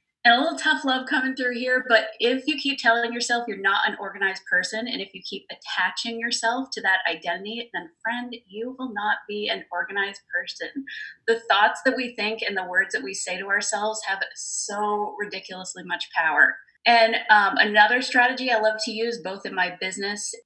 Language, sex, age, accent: English, female, 20-39, American